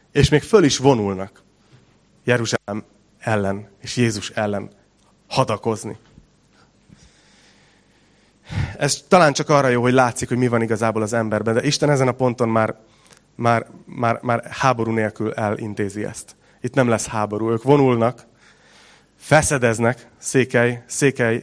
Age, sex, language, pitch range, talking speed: 30-49, male, Hungarian, 110-135 Hz, 130 wpm